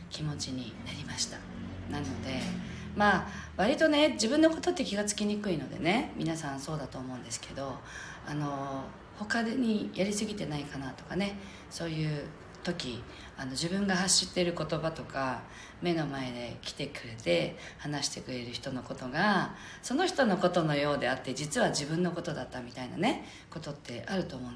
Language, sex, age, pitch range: Japanese, female, 40-59, 135-185 Hz